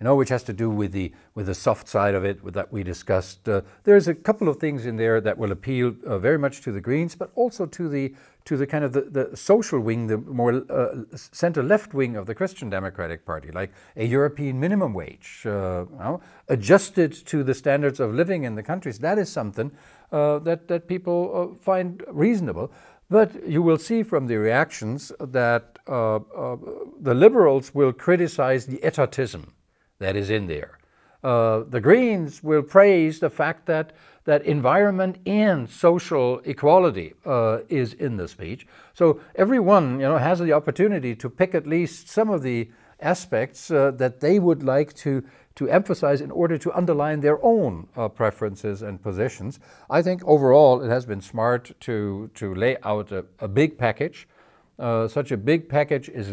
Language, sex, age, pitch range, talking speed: English, male, 60-79, 115-165 Hz, 190 wpm